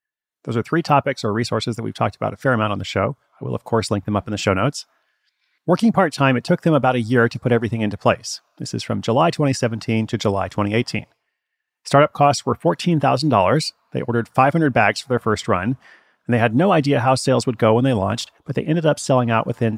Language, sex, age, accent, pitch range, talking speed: English, male, 40-59, American, 110-145 Hz, 240 wpm